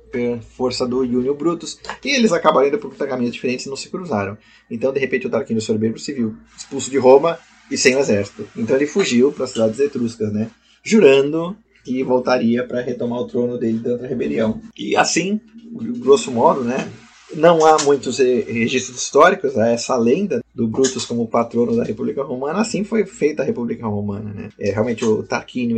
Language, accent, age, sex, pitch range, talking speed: Portuguese, Brazilian, 20-39, male, 110-155 Hz, 190 wpm